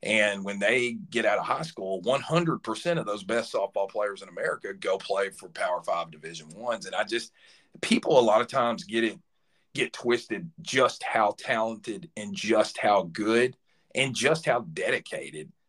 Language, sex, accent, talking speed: English, male, American, 175 wpm